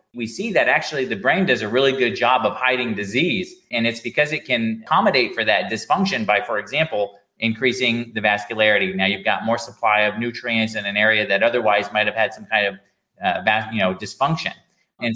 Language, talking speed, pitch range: English, 205 wpm, 110-130 Hz